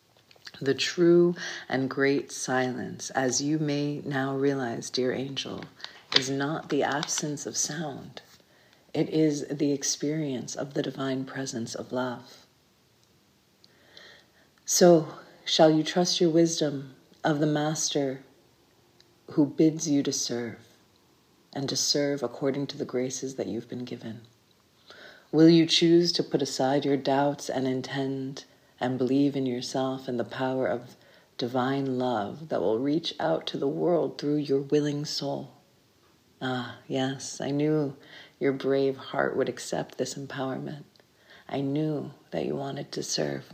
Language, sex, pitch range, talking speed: English, female, 130-150 Hz, 140 wpm